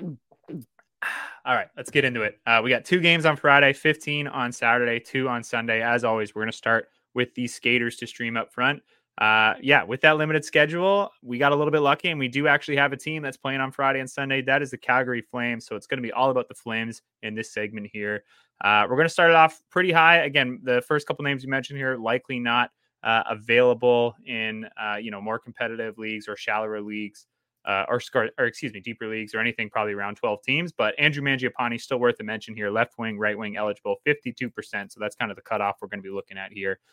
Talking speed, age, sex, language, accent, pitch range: 240 wpm, 20-39, male, English, American, 110-135 Hz